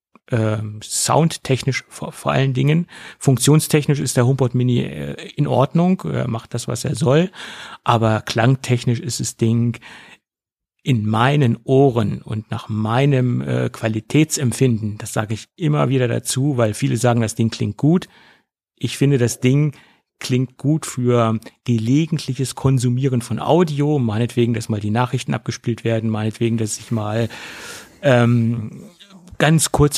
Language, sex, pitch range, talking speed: German, male, 115-140 Hz, 130 wpm